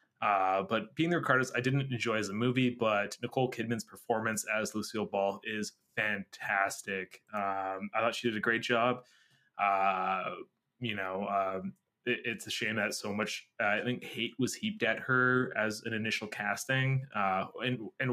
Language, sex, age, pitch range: English, male, 20-39, 100-120 Hz